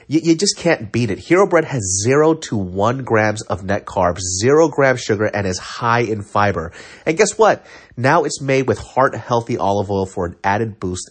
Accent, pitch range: American, 105-145 Hz